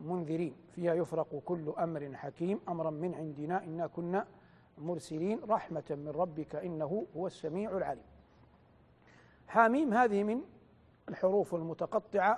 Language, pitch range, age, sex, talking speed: Arabic, 190-280 Hz, 50-69, male, 115 wpm